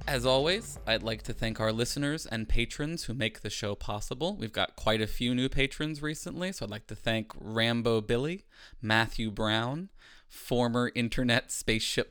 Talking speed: 175 wpm